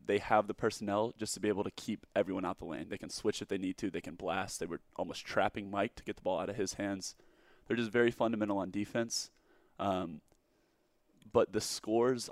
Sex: male